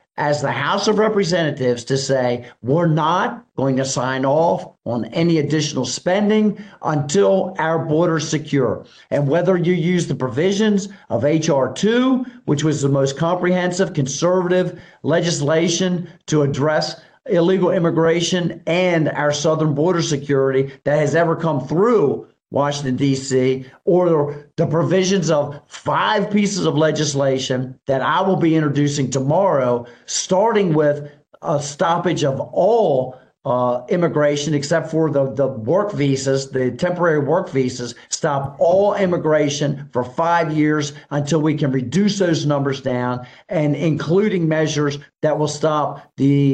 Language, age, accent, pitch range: English, 50-69, American, 140-175 Hz